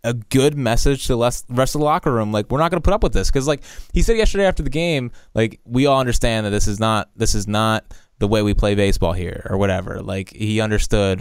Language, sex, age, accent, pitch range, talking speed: English, male, 20-39, American, 110-155 Hz, 260 wpm